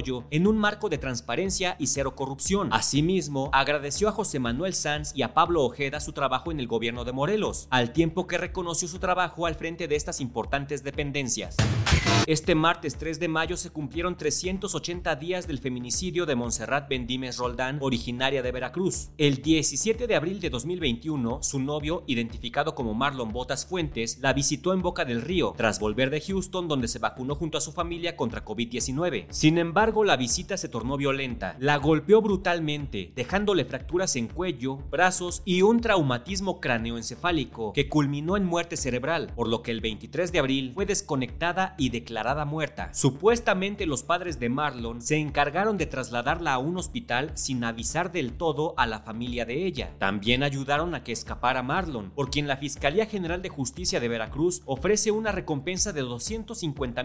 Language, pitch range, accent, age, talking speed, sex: Spanish, 125-175 Hz, Mexican, 40-59, 170 wpm, male